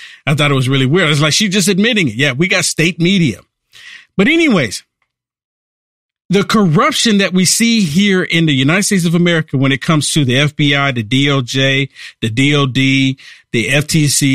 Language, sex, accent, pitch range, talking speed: English, male, American, 140-215 Hz, 180 wpm